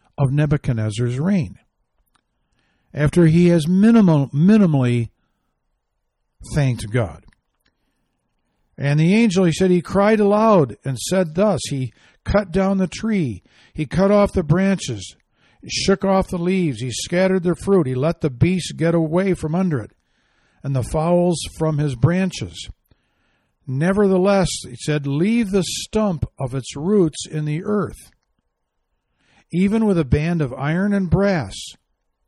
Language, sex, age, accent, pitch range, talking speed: English, male, 60-79, American, 125-185 Hz, 135 wpm